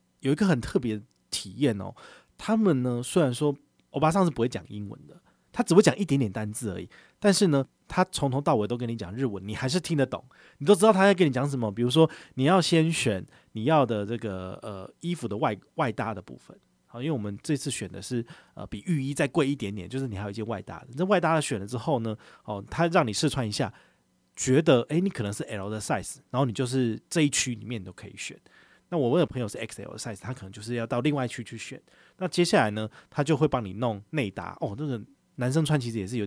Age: 30-49